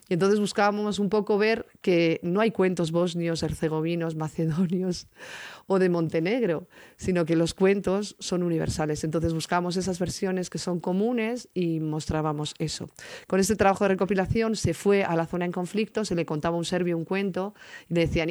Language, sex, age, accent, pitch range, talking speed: Spanish, female, 40-59, Spanish, 160-195 Hz, 180 wpm